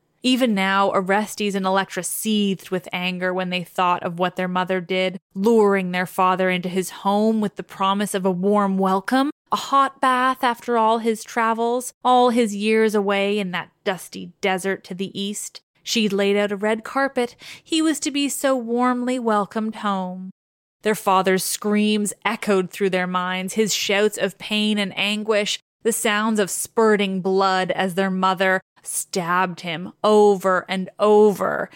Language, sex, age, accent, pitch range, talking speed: English, female, 20-39, American, 185-220 Hz, 165 wpm